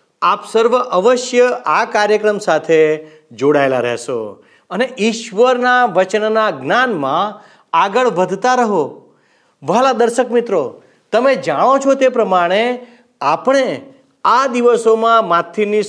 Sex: male